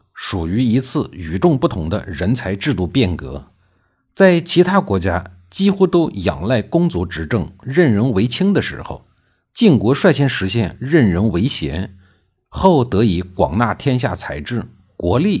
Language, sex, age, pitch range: Chinese, male, 50-69, 90-155 Hz